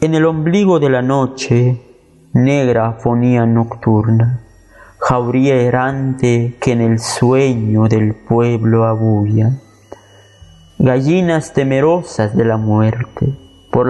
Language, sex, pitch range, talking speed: Spanish, male, 110-135 Hz, 105 wpm